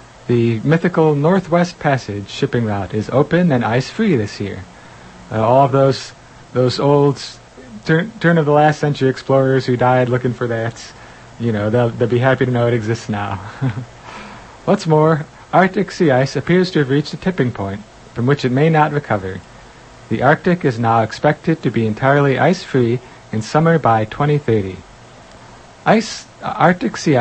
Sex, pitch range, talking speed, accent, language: male, 115-150 Hz, 155 wpm, American, English